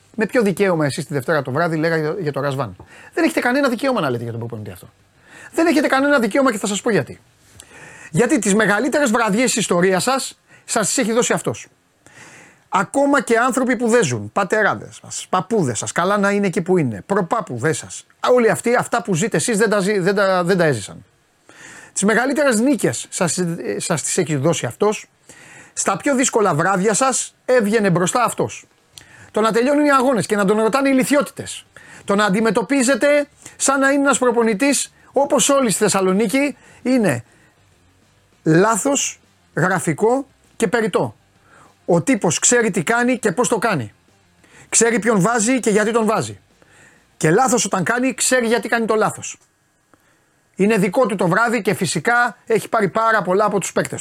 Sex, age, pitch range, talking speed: male, 30-49, 170-245 Hz, 175 wpm